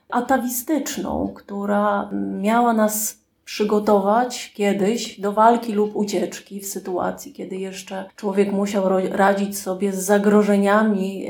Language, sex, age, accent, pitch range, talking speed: Polish, female, 30-49, native, 195-220 Hz, 105 wpm